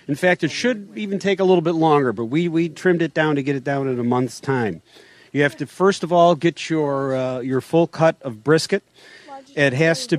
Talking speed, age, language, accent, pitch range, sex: 240 wpm, 40-59, English, American, 130-165 Hz, male